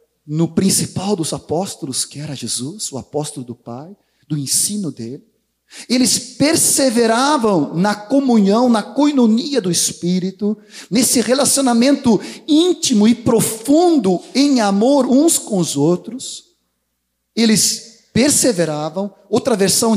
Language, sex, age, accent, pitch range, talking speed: Portuguese, male, 40-59, Brazilian, 195-260 Hz, 110 wpm